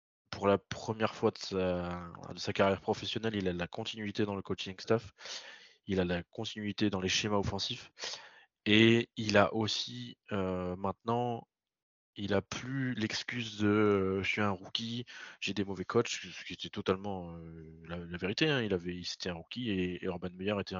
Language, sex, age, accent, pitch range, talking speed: French, male, 20-39, French, 95-110 Hz, 190 wpm